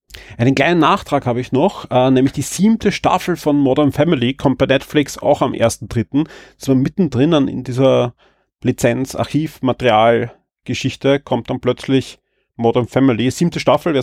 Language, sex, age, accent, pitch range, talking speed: German, male, 30-49, German, 125-150 Hz, 140 wpm